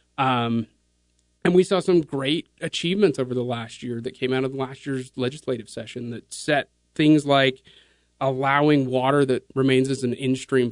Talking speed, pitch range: 170 wpm, 120-135 Hz